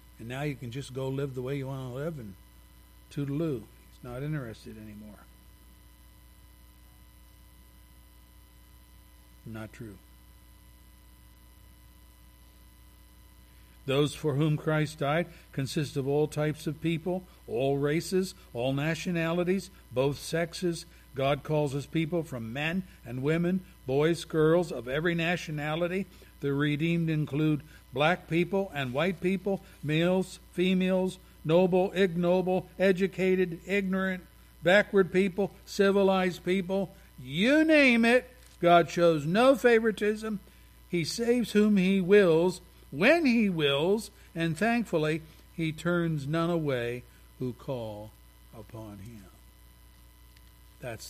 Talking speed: 110 wpm